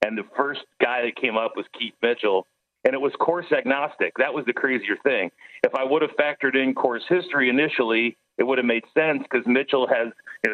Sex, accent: male, American